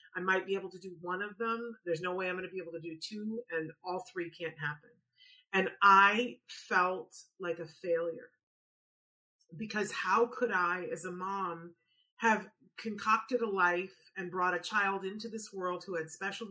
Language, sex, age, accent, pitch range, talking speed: English, female, 30-49, American, 170-205 Hz, 190 wpm